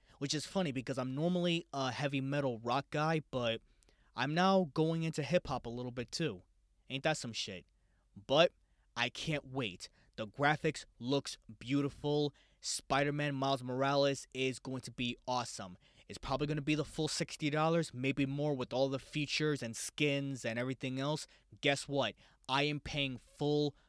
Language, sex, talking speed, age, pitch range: English, male, 165 wpm, 20-39, 125-160 Hz